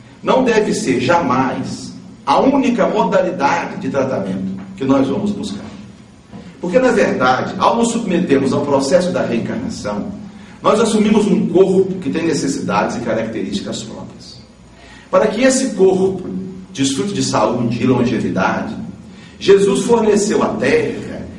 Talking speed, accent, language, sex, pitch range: 130 wpm, Brazilian, Portuguese, male, 170-220 Hz